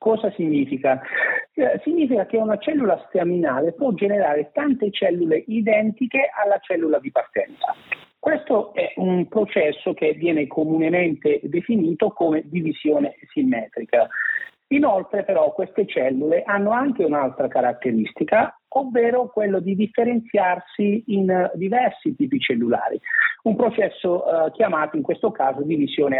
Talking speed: 115 wpm